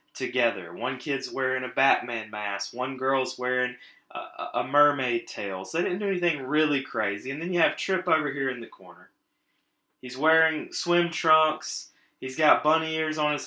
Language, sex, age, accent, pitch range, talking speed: English, male, 20-39, American, 125-160 Hz, 180 wpm